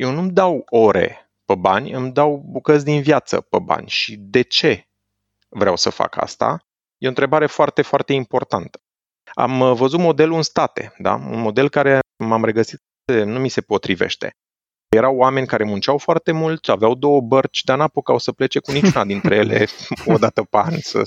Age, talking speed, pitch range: 30-49, 180 wpm, 120-155 Hz